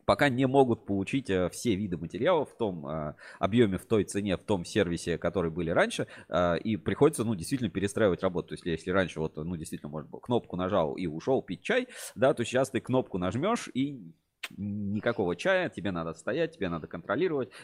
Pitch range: 80-110 Hz